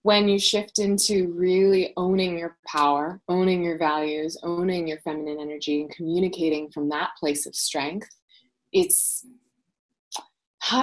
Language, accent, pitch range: English, American, 160-210 Hz